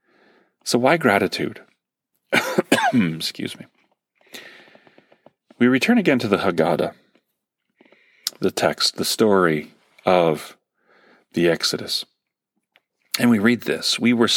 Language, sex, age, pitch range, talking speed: English, male, 40-59, 85-110 Hz, 100 wpm